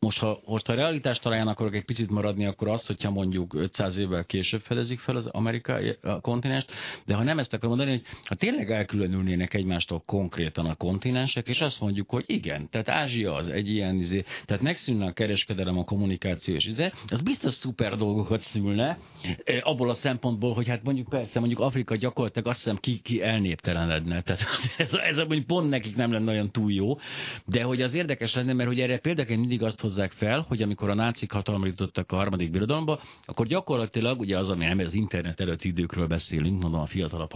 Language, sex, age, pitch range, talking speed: Hungarian, male, 50-69, 95-125 Hz, 190 wpm